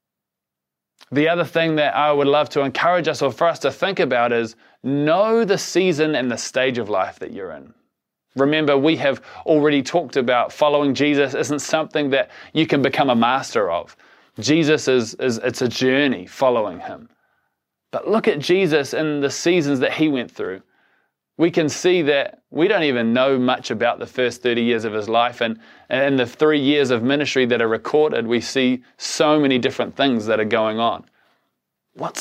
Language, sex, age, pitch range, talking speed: English, male, 20-39, 120-155 Hz, 190 wpm